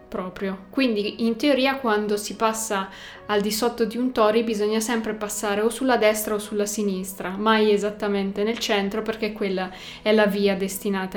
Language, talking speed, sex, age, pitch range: Italian, 170 wpm, female, 20-39, 200-230 Hz